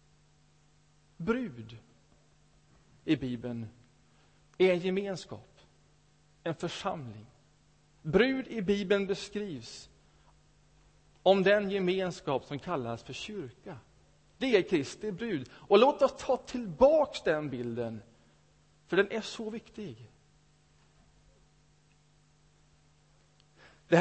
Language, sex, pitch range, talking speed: Swedish, male, 140-225 Hz, 90 wpm